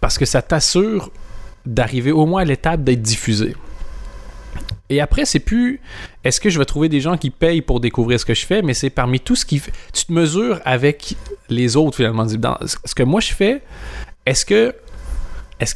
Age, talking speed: 30-49, 185 wpm